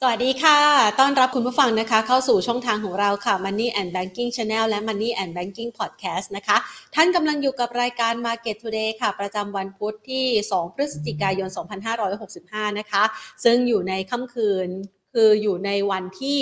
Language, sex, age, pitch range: Thai, female, 30-49, 195-240 Hz